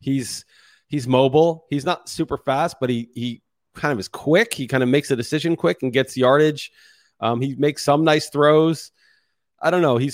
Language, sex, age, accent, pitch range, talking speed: English, male, 30-49, American, 105-135 Hz, 200 wpm